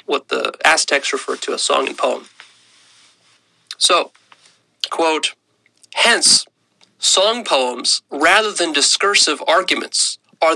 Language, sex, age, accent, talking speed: English, male, 30-49, American, 110 wpm